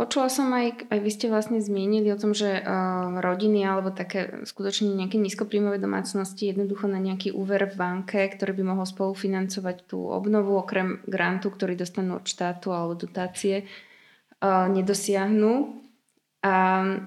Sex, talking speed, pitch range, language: female, 140 wpm, 190-215 Hz, Slovak